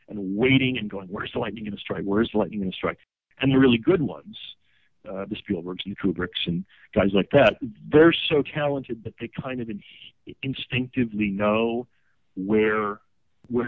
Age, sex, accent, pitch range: 40-59, male, American, 100-125 Hz